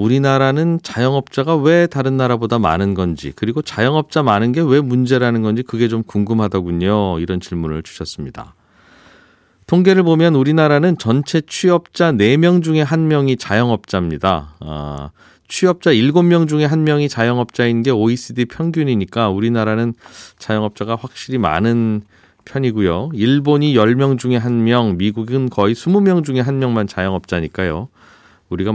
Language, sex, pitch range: Korean, male, 100-140 Hz